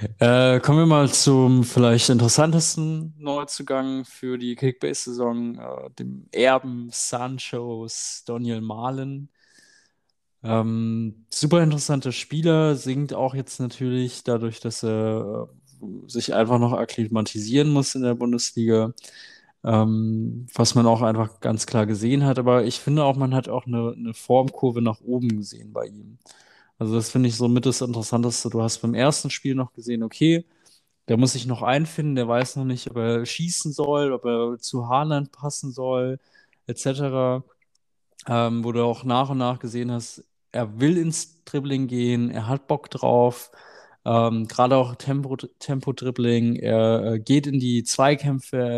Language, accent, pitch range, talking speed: German, German, 115-135 Hz, 155 wpm